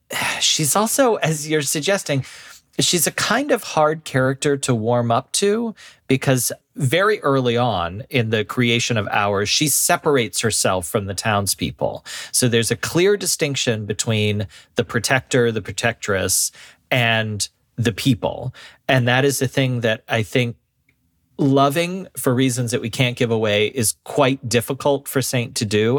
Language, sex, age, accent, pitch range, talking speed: English, male, 40-59, American, 110-140 Hz, 150 wpm